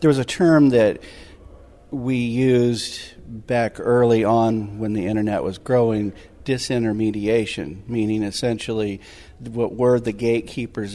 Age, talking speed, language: 50-69, 120 wpm, English